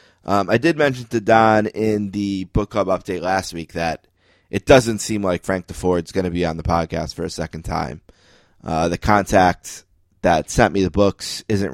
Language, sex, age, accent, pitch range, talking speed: English, male, 20-39, American, 90-105 Hz, 200 wpm